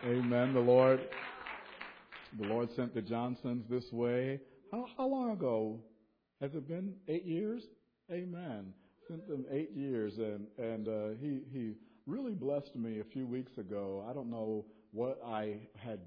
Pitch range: 105-145 Hz